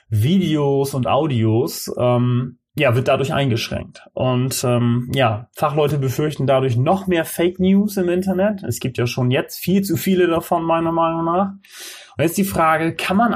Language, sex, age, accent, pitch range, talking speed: German, male, 30-49, German, 120-170 Hz, 170 wpm